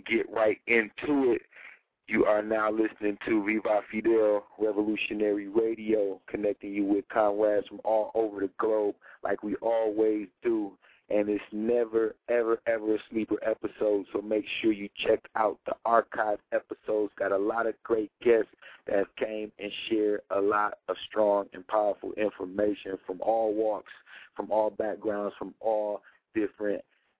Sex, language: male, English